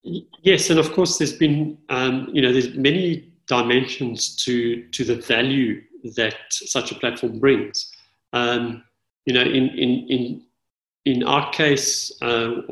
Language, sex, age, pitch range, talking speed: English, male, 40-59, 120-155 Hz, 145 wpm